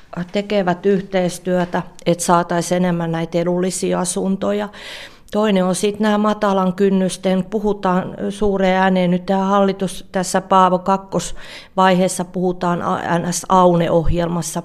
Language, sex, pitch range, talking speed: Finnish, female, 175-195 Hz, 105 wpm